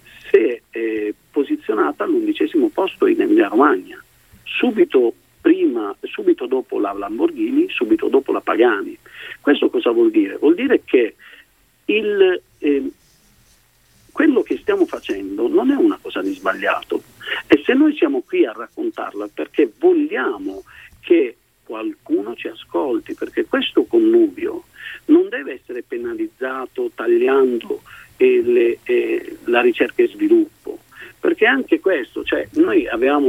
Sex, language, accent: male, Italian, native